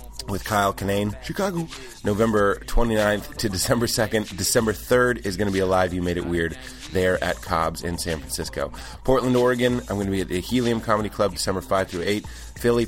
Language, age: English, 30-49